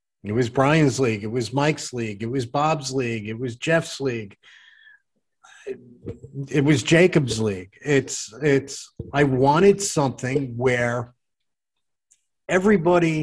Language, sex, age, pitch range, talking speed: English, male, 50-69, 125-165 Hz, 120 wpm